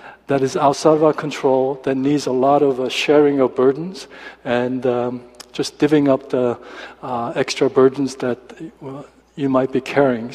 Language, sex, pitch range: Korean, male, 125-155 Hz